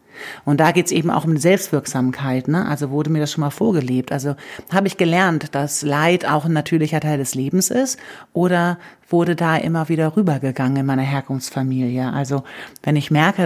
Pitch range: 140-170 Hz